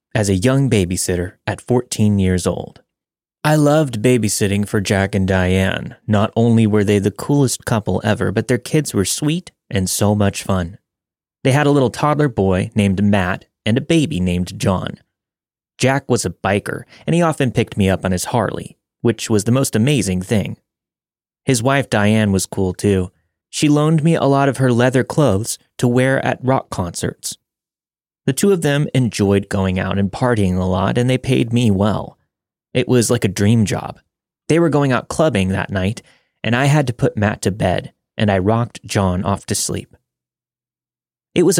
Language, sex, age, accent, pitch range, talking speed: English, male, 30-49, American, 95-130 Hz, 190 wpm